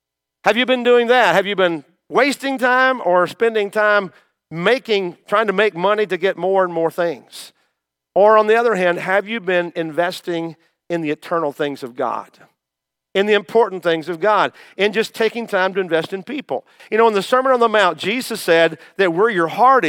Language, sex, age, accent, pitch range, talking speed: English, male, 50-69, American, 160-215 Hz, 200 wpm